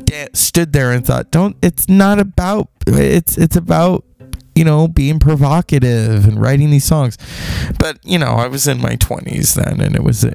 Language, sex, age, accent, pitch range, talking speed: English, male, 20-39, American, 105-130 Hz, 180 wpm